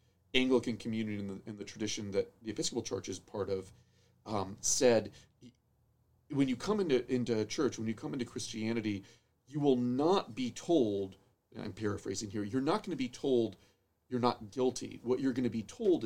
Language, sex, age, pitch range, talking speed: English, male, 40-59, 105-130 Hz, 190 wpm